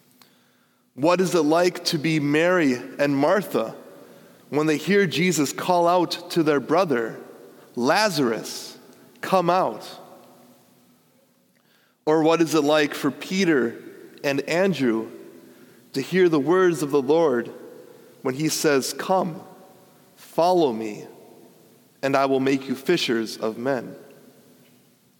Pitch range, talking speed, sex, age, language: 140-180 Hz, 120 wpm, male, 30-49, English